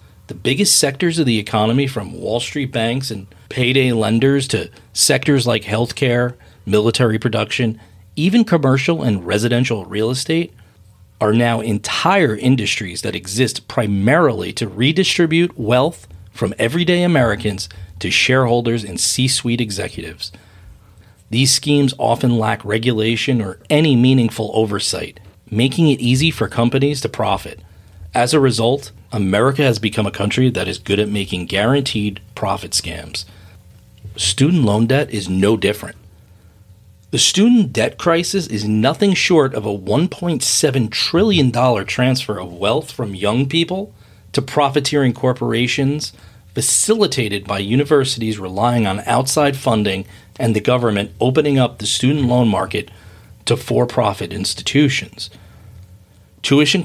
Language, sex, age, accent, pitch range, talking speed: English, male, 40-59, American, 100-135 Hz, 130 wpm